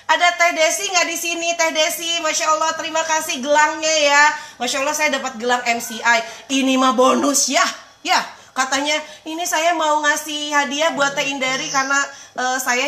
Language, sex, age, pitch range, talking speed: Indonesian, female, 30-49, 225-300 Hz, 170 wpm